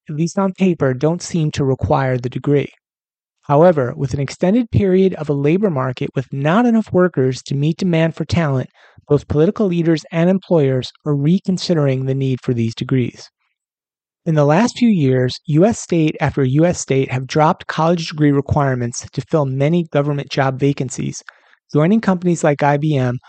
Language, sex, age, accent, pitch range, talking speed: English, male, 30-49, American, 135-170 Hz, 165 wpm